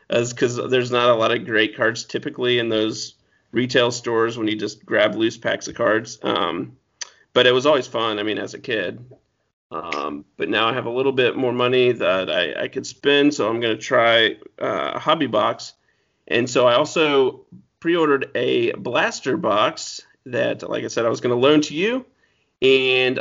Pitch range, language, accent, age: 120-150 Hz, English, American, 40-59